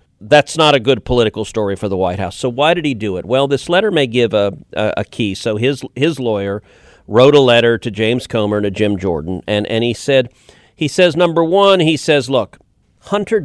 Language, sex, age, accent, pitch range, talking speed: English, male, 40-59, American, 110-150 Hz, 230 wpm